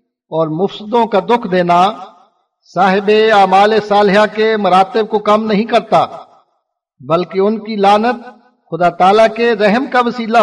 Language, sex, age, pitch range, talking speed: English, male, 50-69, 190-220 Hz, 140 wpm